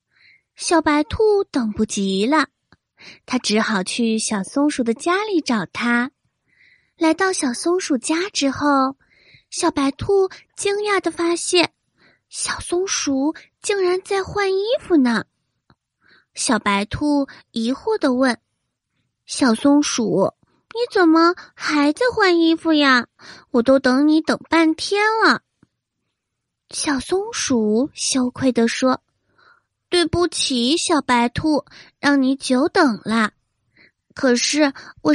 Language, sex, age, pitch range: Chinese, female, 20-39, 250-345 Hz